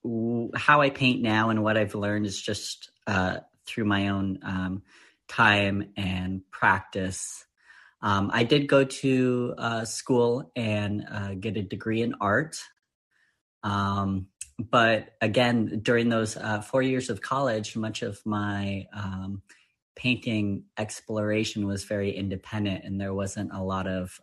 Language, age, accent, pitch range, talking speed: English, 30-49, American, 100-115 Hz, 140 wpm